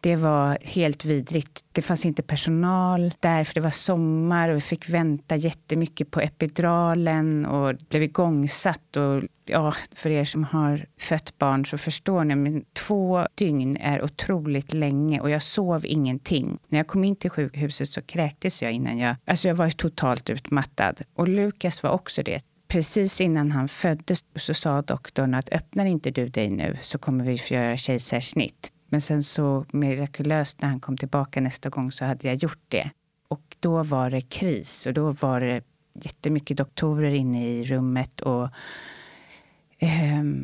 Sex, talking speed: female, 170 wpm